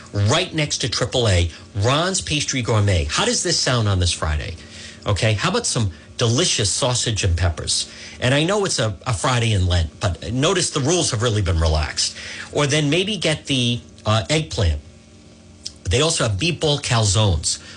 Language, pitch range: English, 95-150 Hz